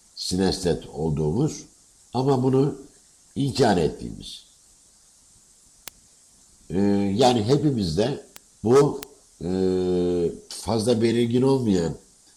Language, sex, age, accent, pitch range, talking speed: Turkish, male, 60-79, native, 90-125 Hz, 70 wpm